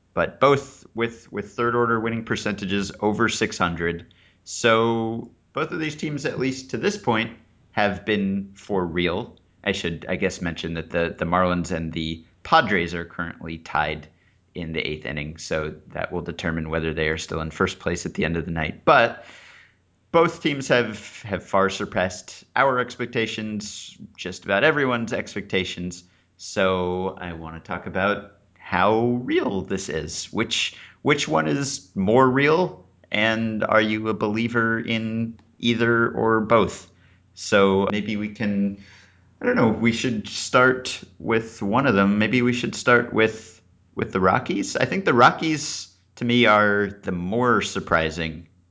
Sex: male